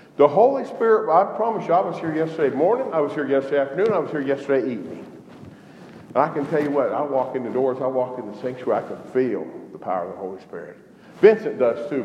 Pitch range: 145-210 Hz